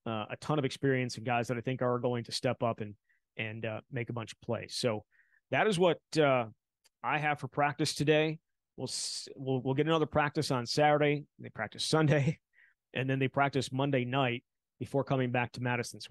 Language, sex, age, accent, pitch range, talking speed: English, male, 30-49, American, 120-150 Hz, 210 wpm